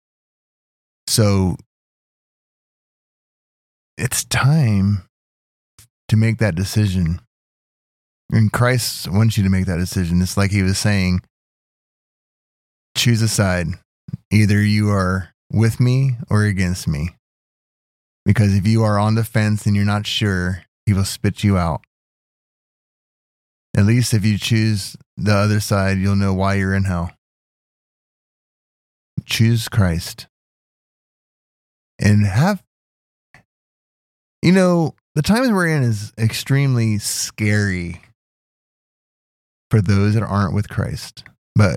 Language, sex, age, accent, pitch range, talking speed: English, male, 20-39, American, 90-110 Hz, 120 wpm